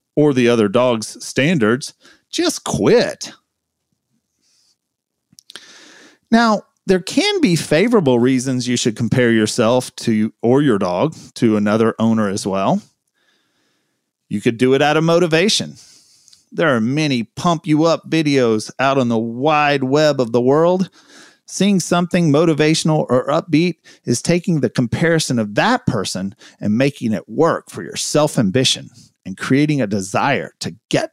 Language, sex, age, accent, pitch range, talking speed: English, male, 40-59, American, 125-180 Hz, 140 wpm